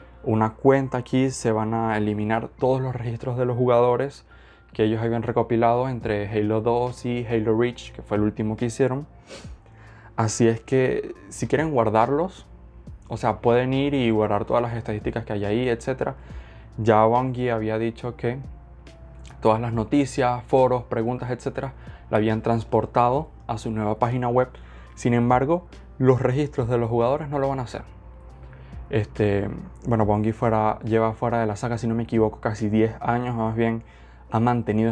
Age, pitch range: 20-39, 110-125 Hz